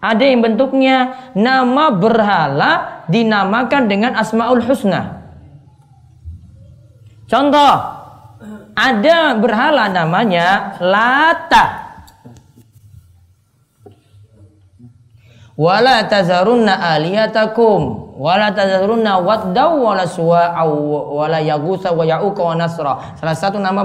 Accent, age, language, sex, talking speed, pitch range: native, 20-39, Indonesian, female, 75 wpm, 150-235 Hz